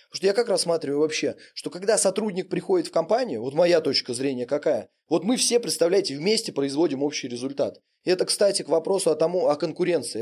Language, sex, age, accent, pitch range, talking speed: Russian, male, 20-39, native, 160-215 Hz, 190 wpm